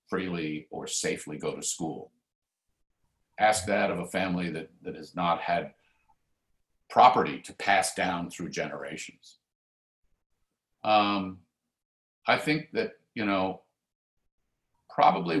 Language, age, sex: English, 50-69, male